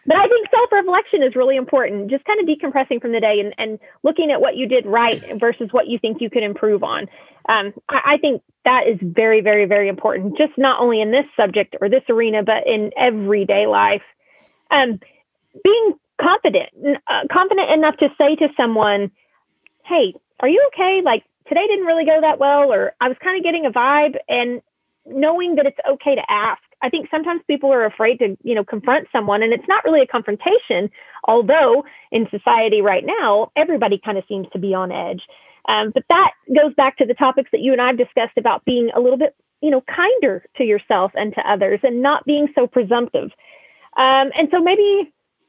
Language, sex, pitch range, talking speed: English, female, 225-310 Hz, 205 wpm